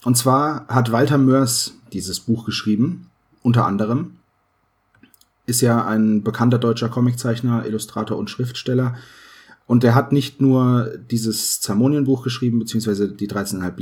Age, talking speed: 30-49, 130 wpm